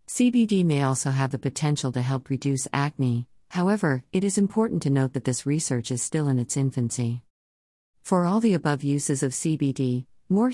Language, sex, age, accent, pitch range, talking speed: English, female, 50-69, American, 130-165 Hz, 180 wpm